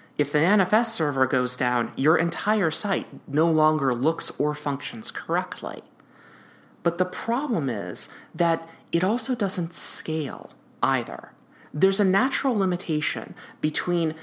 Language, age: English, 30-49